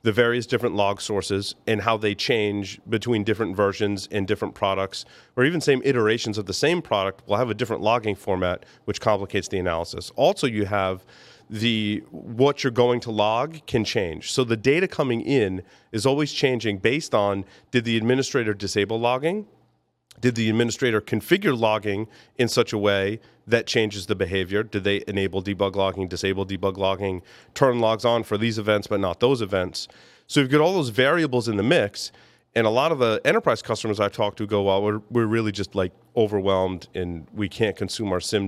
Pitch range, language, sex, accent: 100-120 Hz, English, male, American